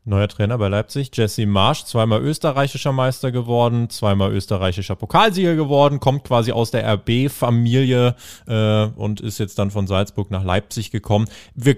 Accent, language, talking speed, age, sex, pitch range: German, German, 150 wpm, 20-39, male, 110-140 Hz